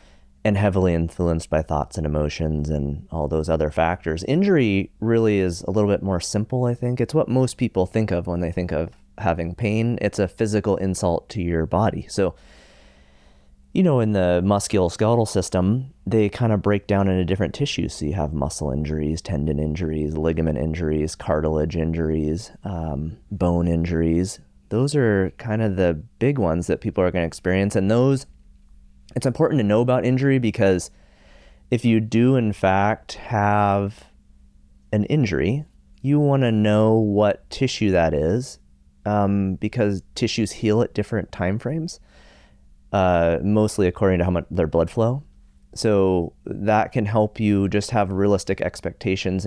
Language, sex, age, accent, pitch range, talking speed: English, male, 30-49, American, 80-105 Hz, 165 wpm